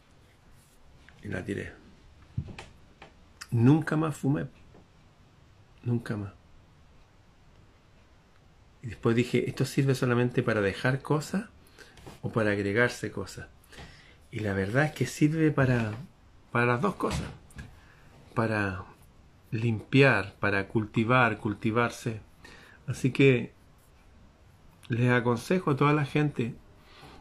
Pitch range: 100-130 Hz